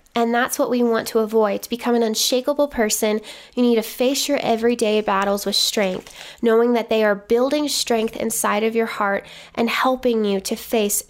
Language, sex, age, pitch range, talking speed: English, female, 10-29, 210-255 Hz, 195 wpm